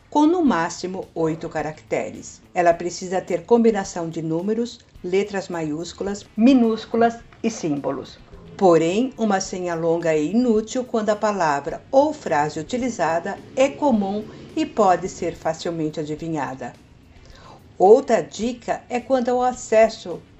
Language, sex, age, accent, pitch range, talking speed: Portuguese, female, 60-79, Brazilian, 170-240 Hz, 120 wpm